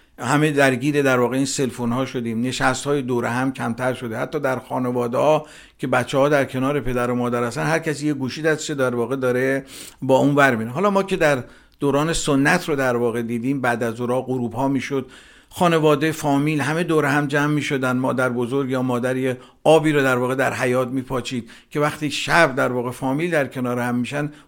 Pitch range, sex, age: 125-150 Hz, male, 50-69